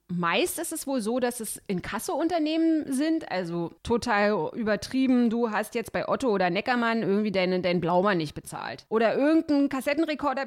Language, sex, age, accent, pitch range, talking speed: German, female, 30-49, German, 200-275 Hz, 160 wpm